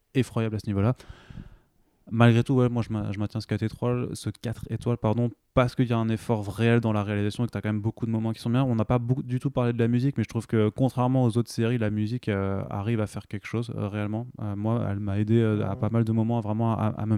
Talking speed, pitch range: 295 wpm, 105-120 Hz